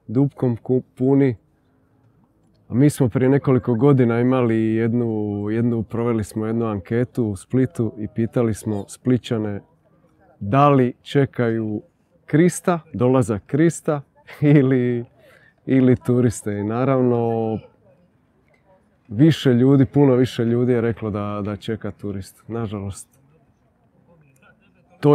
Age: 30-49